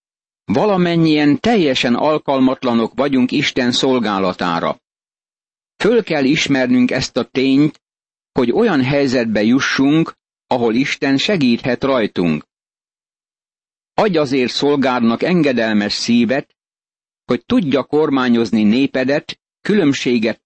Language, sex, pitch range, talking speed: Hungarian, male, 120-150 Hz, 90 wpm